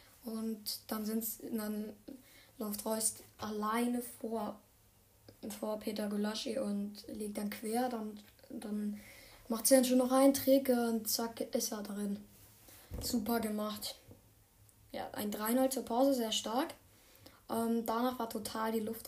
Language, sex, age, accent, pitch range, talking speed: German, female, 10-29, German, 220-260 Hz, 140 wpm